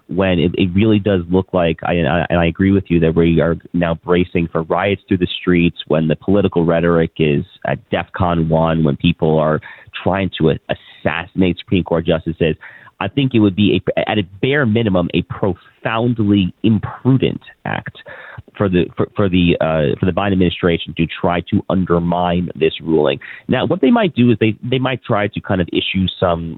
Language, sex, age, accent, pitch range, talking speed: English, male, 30-49, American, 85-105 Hz, 185 wpm